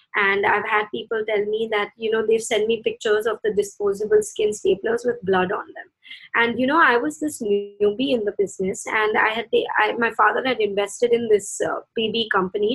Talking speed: 205 wpm